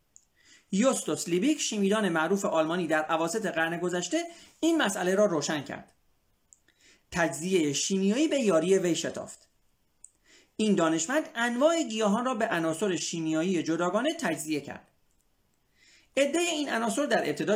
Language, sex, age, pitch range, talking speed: Persian, male, 40-59, 155-245 Hz, 120 wpm